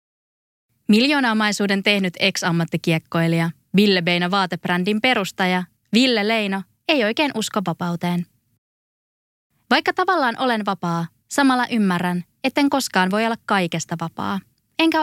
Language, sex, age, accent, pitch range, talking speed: Finnish, female, 20-39, native, 175-250 Hz, 105 wpm